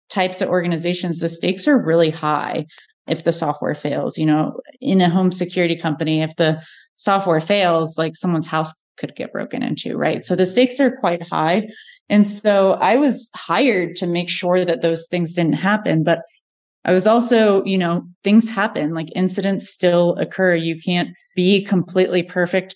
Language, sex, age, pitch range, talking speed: English, female, 20-39, 165-185 Hz, 175 wpm